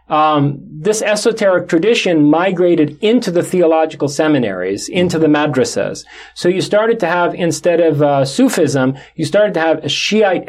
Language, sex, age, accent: English, male, 40-59, American